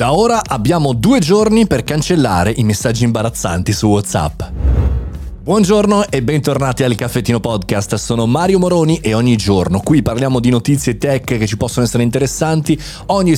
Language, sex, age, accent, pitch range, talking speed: Italian, male, 30-49, native, 100-145 Hz, 155 wpm